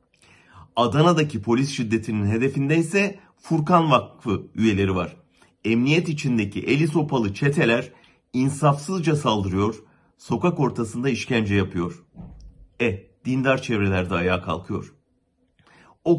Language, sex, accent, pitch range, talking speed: German, male, Turkish, 100-135 Hz, 95 wpm